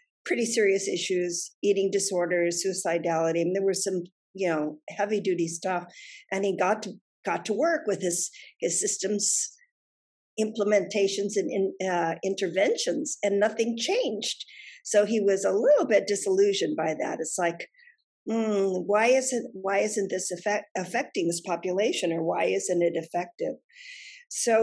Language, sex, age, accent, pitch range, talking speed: English, female, 50-69, American, 180-240 Hz, 150 wpm